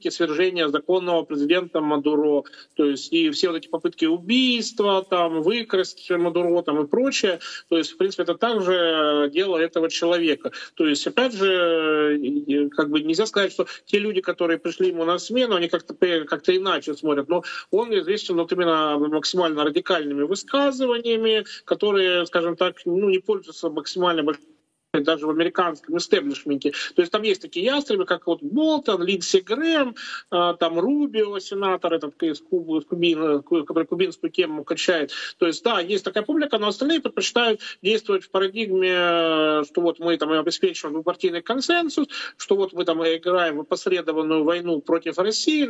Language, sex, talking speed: Russian, male, 150 wpm